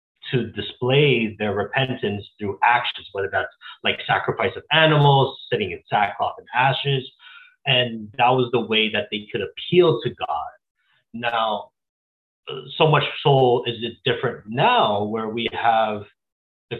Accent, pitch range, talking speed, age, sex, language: American, 110-150 Hz, 145 wpm, 30-49, male, English